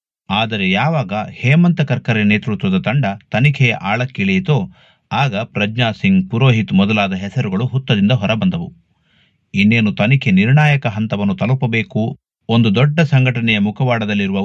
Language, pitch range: Kannada, 105-145 Hz